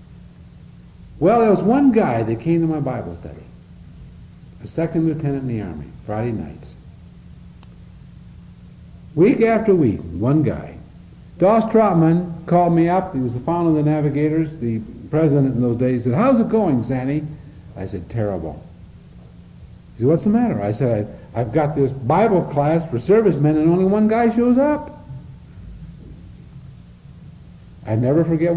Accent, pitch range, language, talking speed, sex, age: American, 110-175 Hz, English, 155 wpm, male, 70-89